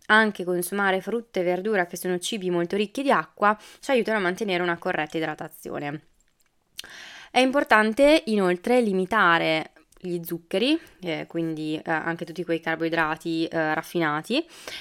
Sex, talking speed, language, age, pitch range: female, 140 wpm, Italian, 20-39, 170-205 Hz